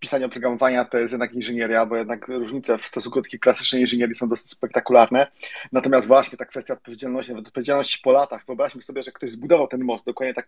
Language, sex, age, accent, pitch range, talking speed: Polish, male, 30-49, native, 125-160 Hz, 195 wpm